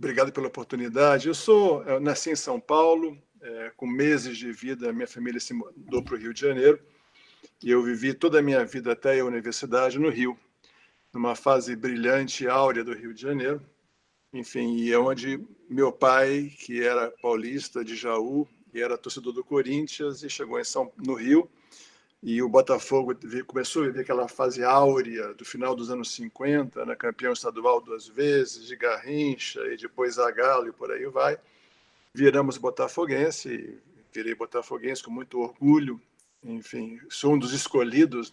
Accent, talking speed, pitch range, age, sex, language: Brazilian, 170 wpm, 125-155 Hz, 50-69, male, Portuguese